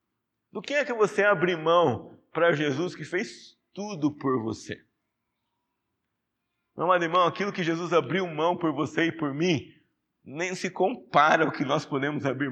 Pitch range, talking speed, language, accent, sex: 130-170 Hz, 170 wpm, Portuguese, Brazilian, male